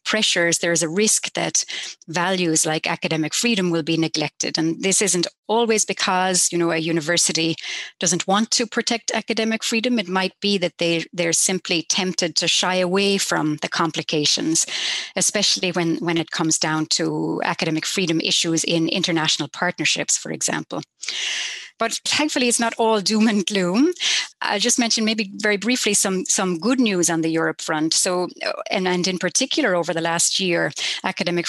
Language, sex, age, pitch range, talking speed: English, female, 30-49, 170-210 Hz, 170 wpm